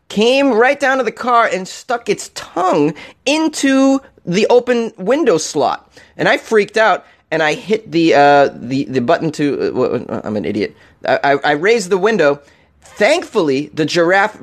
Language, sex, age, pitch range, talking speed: English, male, 30-49, 130-205 Hz, 170 wpm